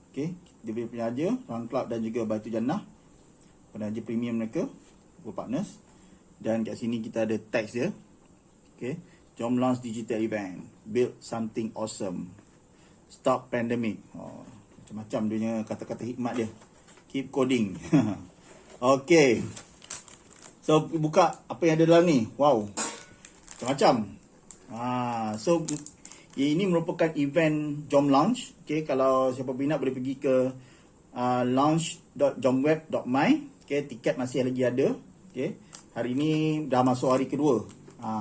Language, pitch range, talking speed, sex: Malay, 120-155 Hz, 125 wpm, male